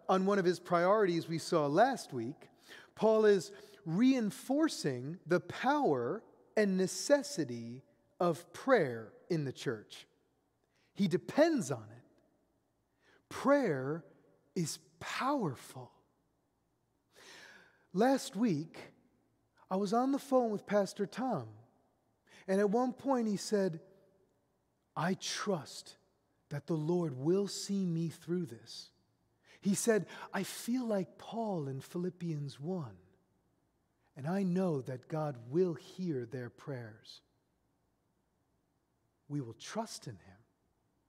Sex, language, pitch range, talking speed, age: male, English, 140-200 Hz, 110 wpm, 40-59